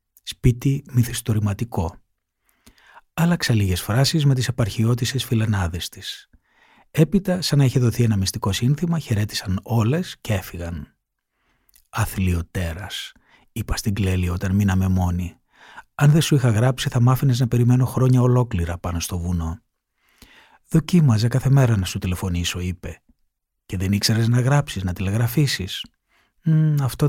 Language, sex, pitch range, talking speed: Greek, male, 95-130 Hz, 125 wpm